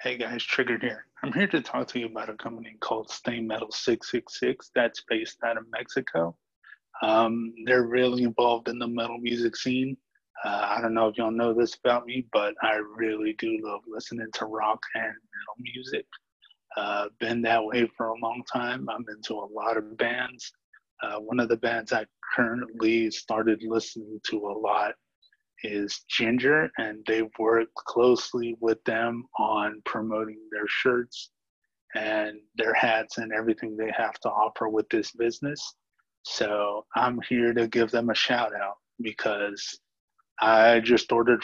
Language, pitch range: English, 110-120 Hz